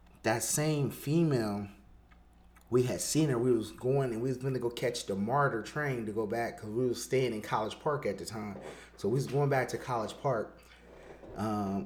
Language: English